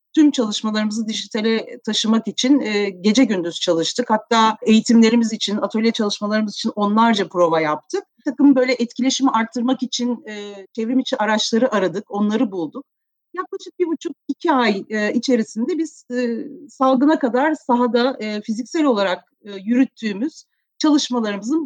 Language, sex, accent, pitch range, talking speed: Turkish, female, native, 215-280 Hz, 120 wpm